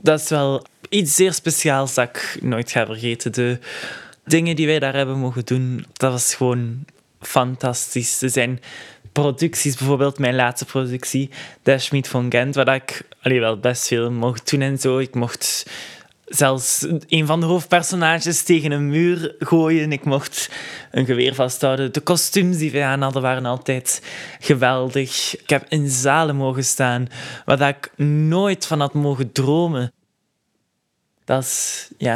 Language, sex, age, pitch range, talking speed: Dutch, male, 10-29, 125-150 Hz, 160 wpm